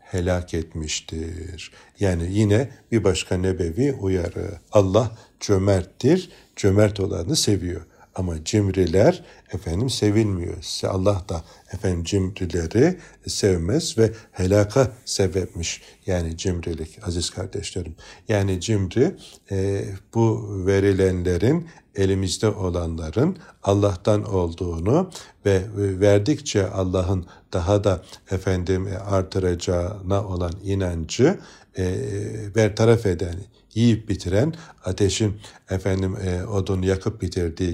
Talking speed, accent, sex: 90 wpm, native, male